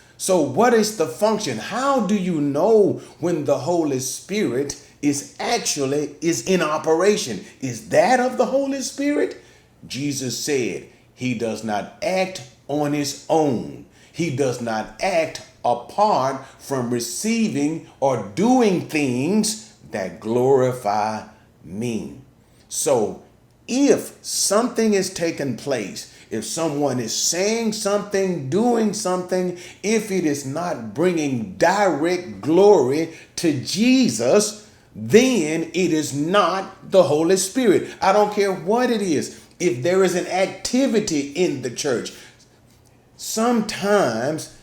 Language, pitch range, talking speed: English, 145-210 Hz, 120 wpm